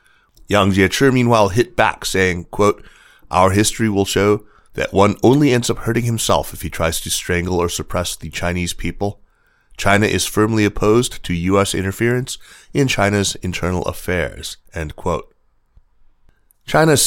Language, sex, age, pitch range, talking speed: English, male, 30-49, 85-105 Hz, 150 wpm